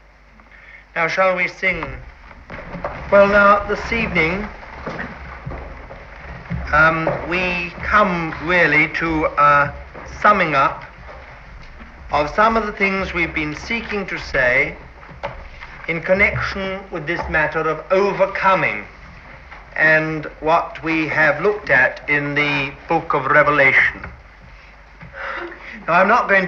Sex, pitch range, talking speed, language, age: male, 150-200 Hz, 110 wpm, English, 60-79